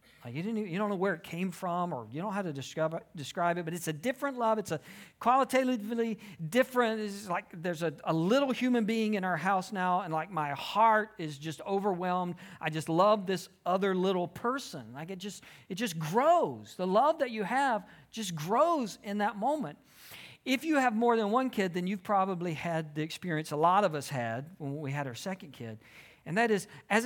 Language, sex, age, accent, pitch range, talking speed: English, male, 50-69, American, 175-245 Hz, 215 wpm